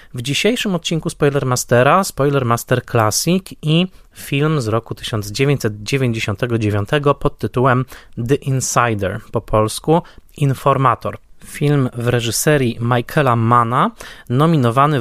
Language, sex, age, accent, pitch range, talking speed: Polish, male, 20-39, native, 115-140 Hz, 95 wpm